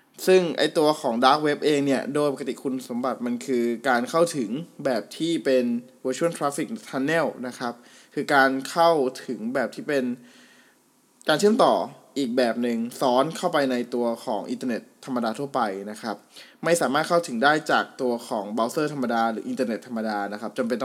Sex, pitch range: male, 125-175 Hz